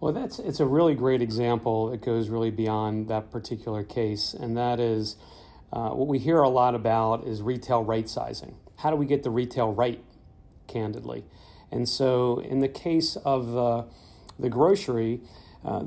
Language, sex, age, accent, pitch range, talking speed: English, male, 40-59, American, 115-130 Hz, 175 wpm